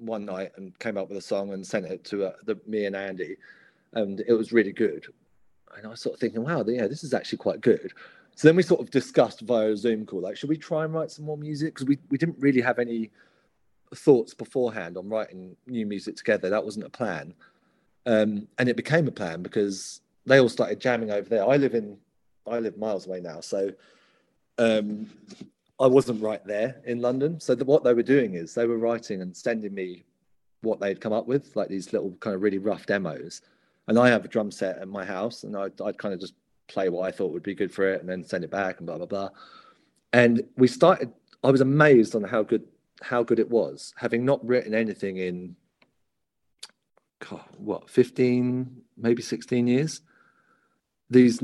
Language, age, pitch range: English, 30-49, 105-130 Hz